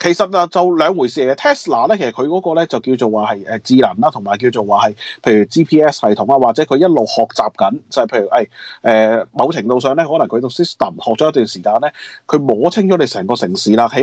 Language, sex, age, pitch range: Chinese, male, 30-49, 115-180 Hz